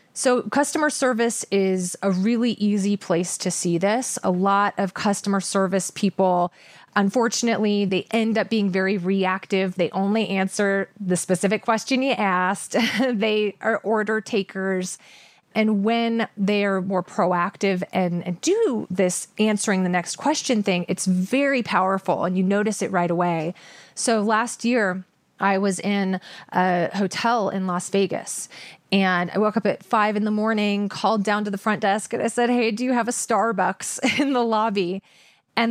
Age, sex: 30-49, female